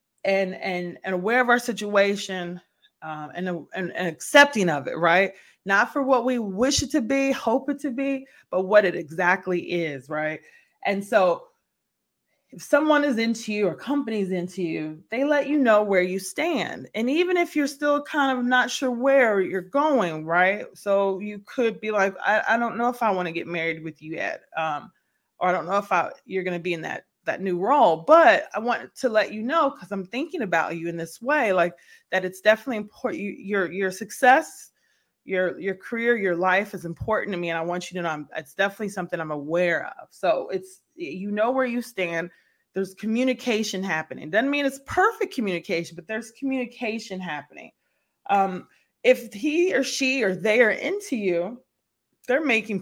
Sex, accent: female, American